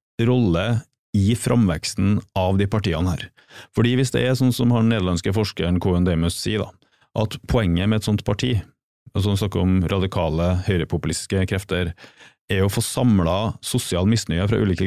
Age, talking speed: 30-49, 165 wpm